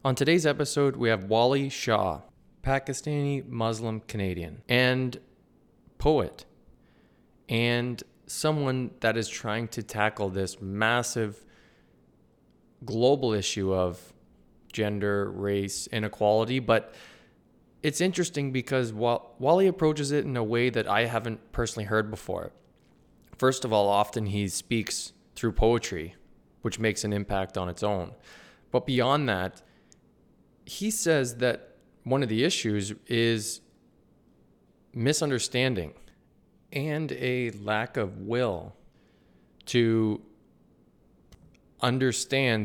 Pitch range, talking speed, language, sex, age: 105-135 Hz, 110 wpm, English, male, 20-39